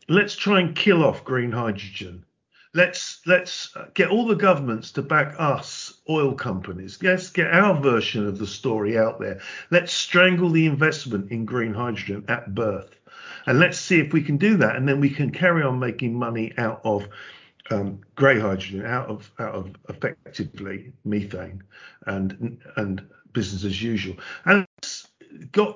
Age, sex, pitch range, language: 50-69, male, 115-170 Hz, English